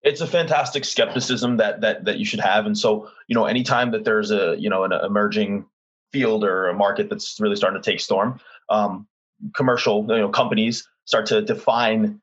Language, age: English, 20-39